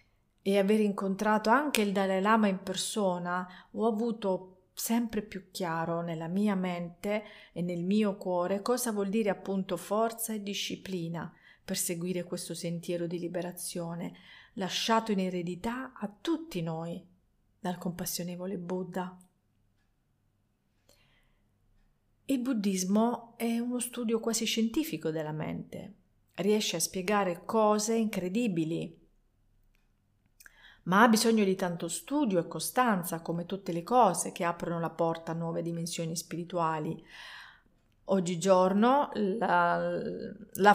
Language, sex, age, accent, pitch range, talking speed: Italian, female, 40-59, native, 170-210 Hz, 120 wpm